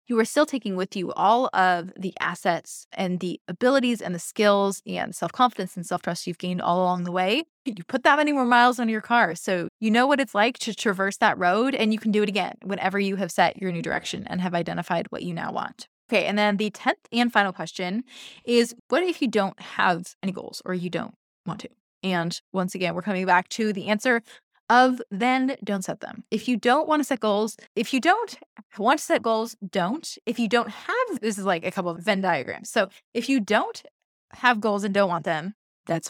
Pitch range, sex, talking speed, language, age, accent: 185-240 Hz, female, 230 wpm, English, 20-39, American